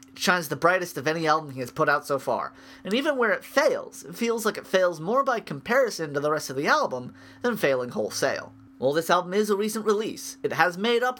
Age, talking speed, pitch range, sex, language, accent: 30-49, 245 wpm, 145-220 Hz, male, English, American